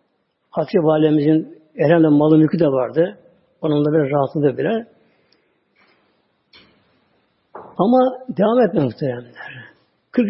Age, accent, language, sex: 60-79, native, Turkish, male